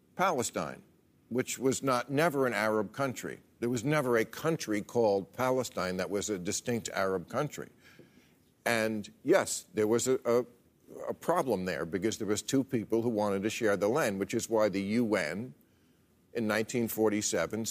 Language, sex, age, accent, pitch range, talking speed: English, male, 50-69, American, 110-140 Hz, 160 wpm